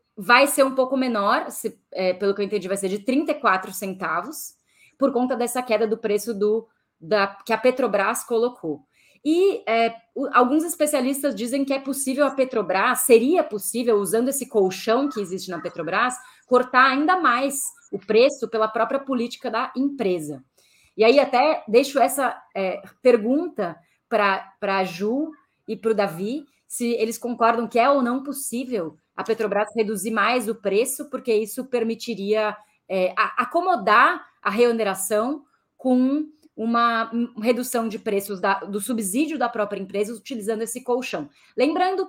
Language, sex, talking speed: Portuguese, female, 150 wpm